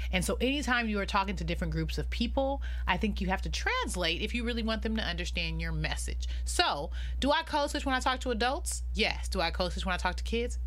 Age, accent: 30-49, American